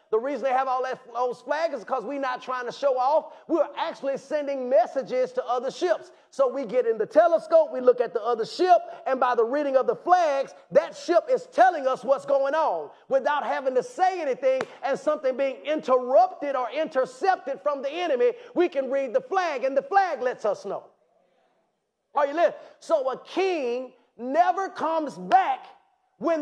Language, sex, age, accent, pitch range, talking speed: English, male, 30-49, American, 275-370 Hz, 195 wpm